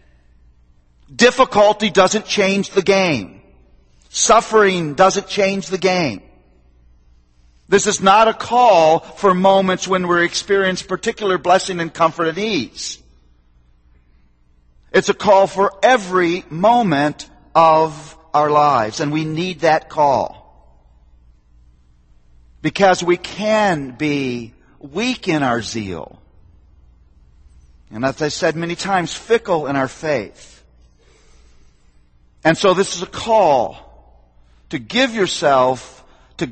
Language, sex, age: English, male, 50-69